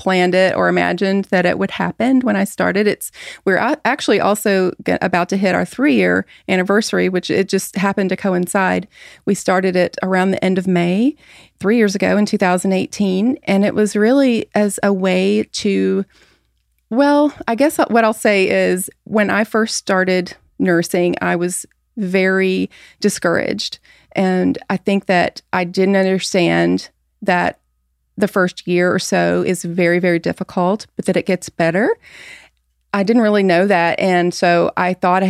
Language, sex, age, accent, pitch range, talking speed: English, female, 30-49, American, 180-205 Hz, 165 wpm